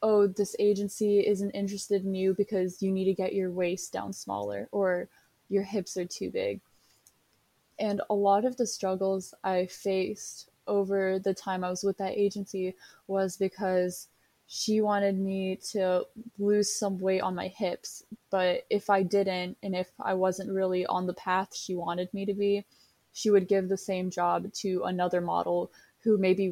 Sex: female